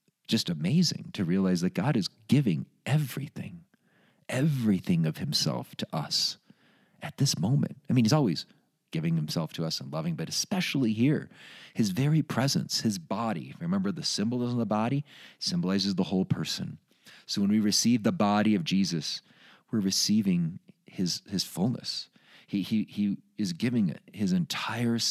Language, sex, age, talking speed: English, male, 40-59, 155 wpm